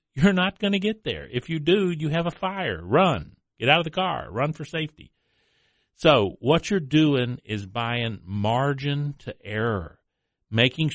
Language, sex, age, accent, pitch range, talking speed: English, male, 50-69, American, 100-135 Hz, 175 wpm